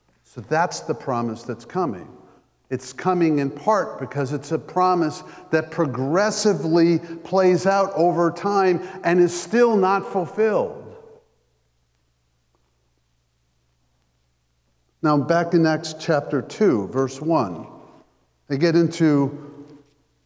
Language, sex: English, male